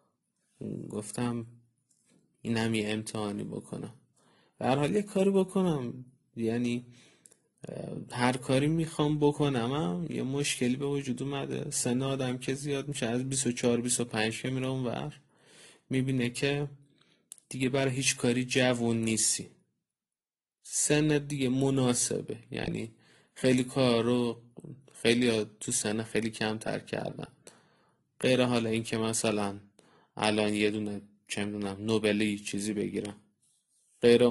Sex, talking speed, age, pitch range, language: male, 115 wpm, 30-49, 110-130 Hz, English